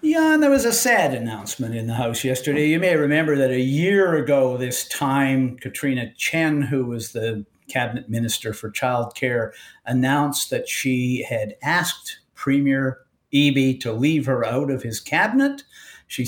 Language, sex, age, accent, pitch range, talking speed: English, male, 50-69, American, 120-150 Hz, 165 wpm